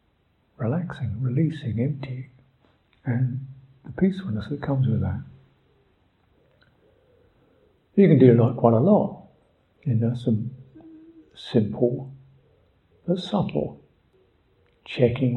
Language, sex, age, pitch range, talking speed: English, male, 60-79, 120-140 Hz, 100 wpm